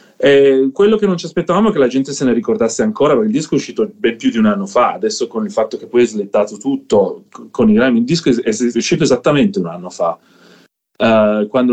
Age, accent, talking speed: 30-49, native, 240 wpm